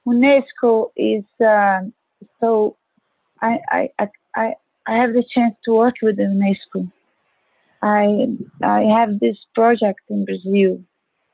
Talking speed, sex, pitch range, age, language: 115 wpm, female, 195-240 Hz, 30-49, English